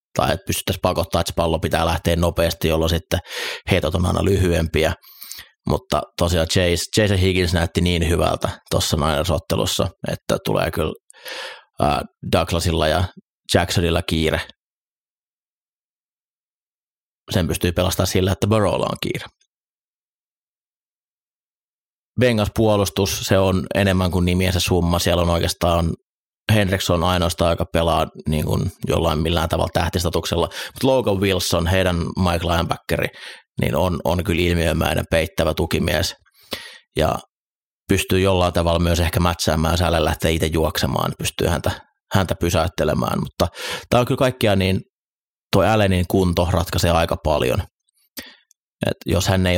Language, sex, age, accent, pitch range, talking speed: Finnish, male, 30-49, native, 85-95 Hz, 125 wpm